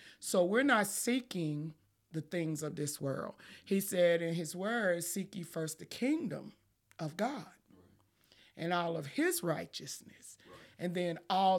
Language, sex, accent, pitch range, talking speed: English, male, American, 160-195 Hz, 150 wpm